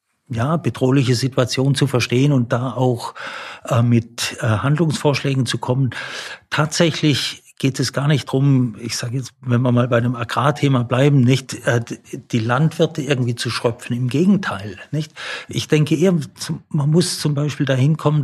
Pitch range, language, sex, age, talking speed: 120-145 Hz, German, male, 50-69, 160 wpm